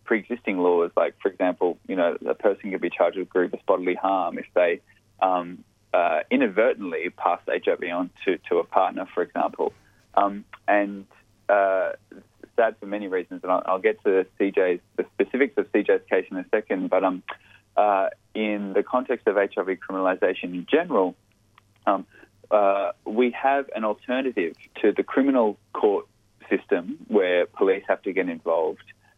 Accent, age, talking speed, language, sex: Australian, 20-39, 160 wpm, English, male